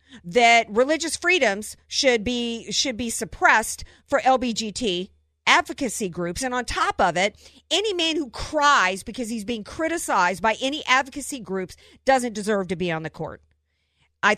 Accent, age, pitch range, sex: American, 50-69, 195-270 Hz, female